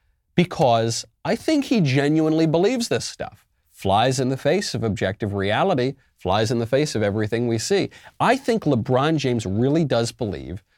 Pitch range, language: 100-160 Hz, English